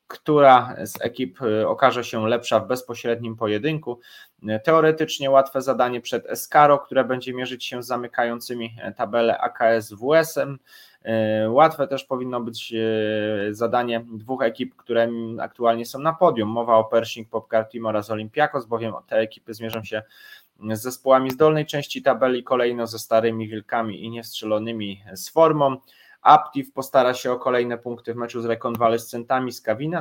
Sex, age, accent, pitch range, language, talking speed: male, 20-39, native, 110-130 Hz, Polish, 145 wpm